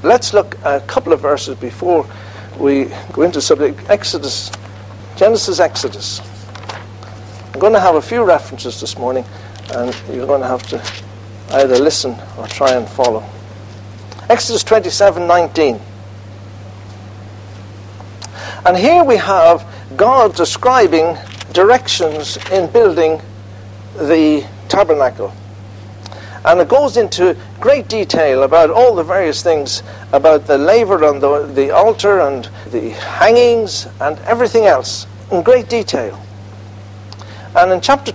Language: English